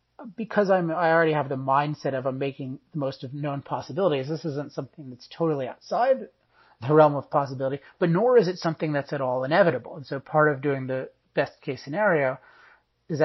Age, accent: 30-49, American